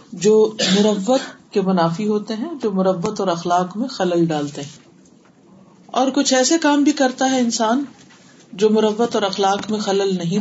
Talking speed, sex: 165 wpm, female